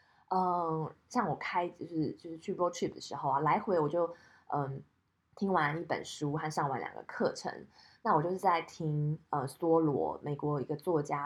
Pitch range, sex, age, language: 150-190 Hz, female, 20-39, Chinese